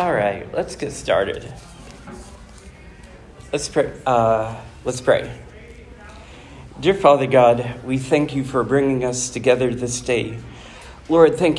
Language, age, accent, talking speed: English, 40-59, American, 125 wpm